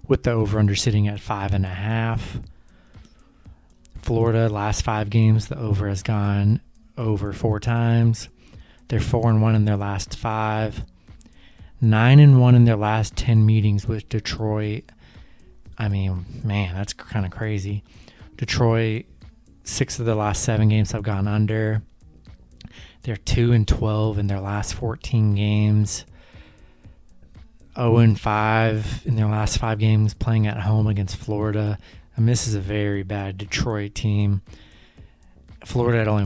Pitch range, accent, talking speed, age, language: 100-115 Hz, American, 145 wpm, 20-39, English